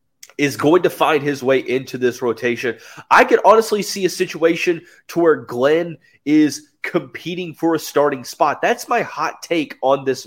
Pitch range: 115-145 Hz